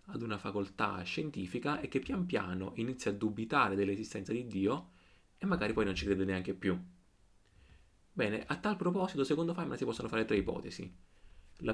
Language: Italian